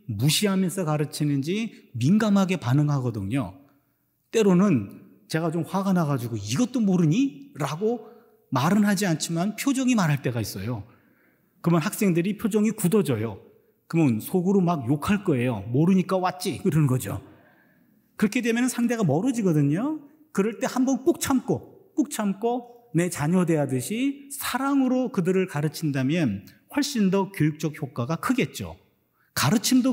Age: 40-59